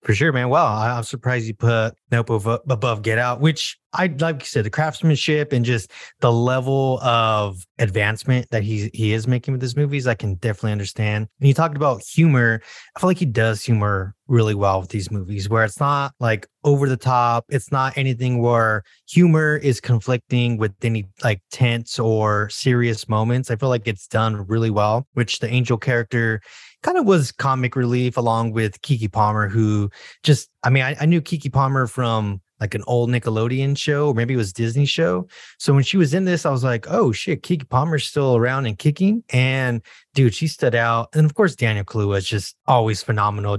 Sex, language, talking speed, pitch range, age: male, English, 200 wpm, 110-135 Hz, 20-39